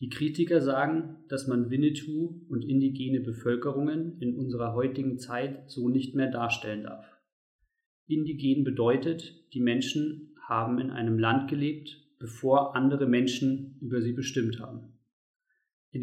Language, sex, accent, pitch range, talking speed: German, male, German, 125-150 Hz, 130 wpm